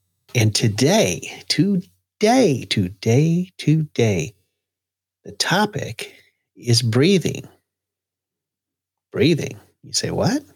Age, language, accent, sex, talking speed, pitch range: 40-59, English, American, male, 75 wpm, 95-120 Hz